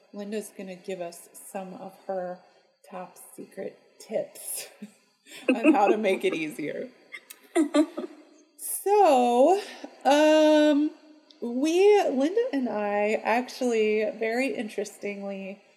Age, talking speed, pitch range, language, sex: 30-49, 100 wpm, 205-260 Hz, English, female